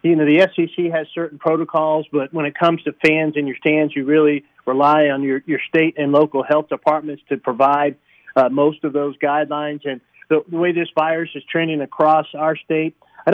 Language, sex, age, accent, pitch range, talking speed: English, male, 40-59, American, 140-155 Hz, 205 wpm